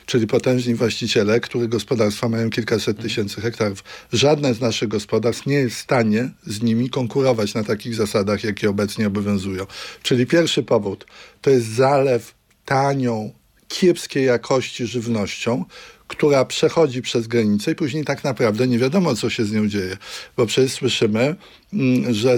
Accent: native